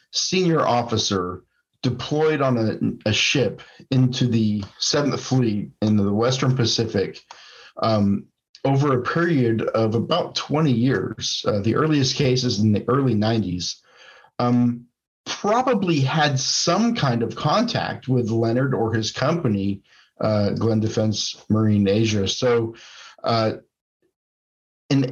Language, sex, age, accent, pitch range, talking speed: English, male, 50-69, American, 105-130 Hz, 120 wpm